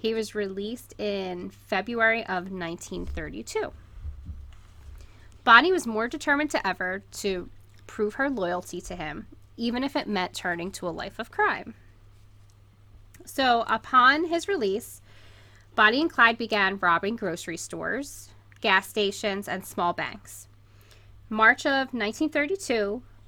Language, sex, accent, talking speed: English, female, American, 125 wpm